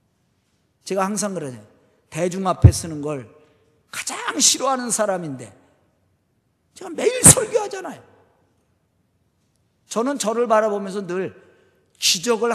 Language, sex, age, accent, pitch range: Korean, male, 40-59, native, 175-290 Hz